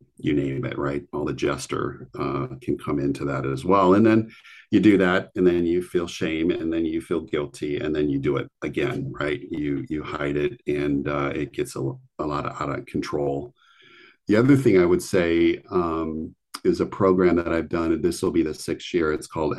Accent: American